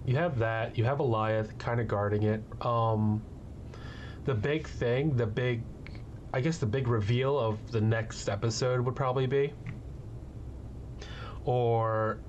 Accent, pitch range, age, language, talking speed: American, 110-125 Hz, 30-49, English, 140 wpm